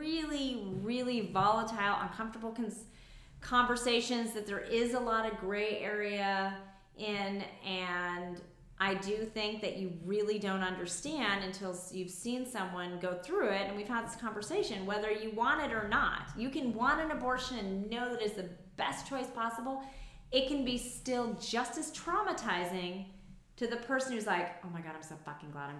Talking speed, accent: 170 wpm, American